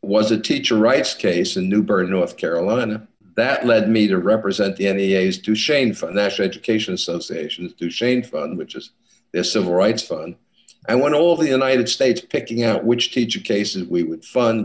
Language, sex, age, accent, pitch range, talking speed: English, male, 60-79, American, 95-120 Hz, 180 wpm